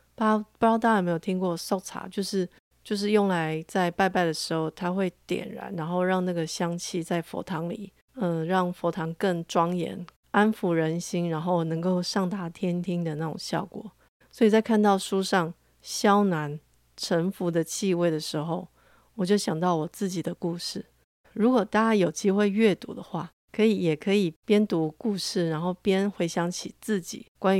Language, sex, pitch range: Chinese, female, 170-200 Hz